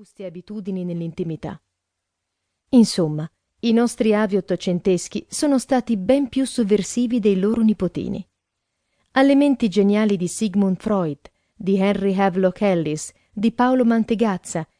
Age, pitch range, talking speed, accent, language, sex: 40-59, 180-230 Hz, 115 wpm, native, Italian, female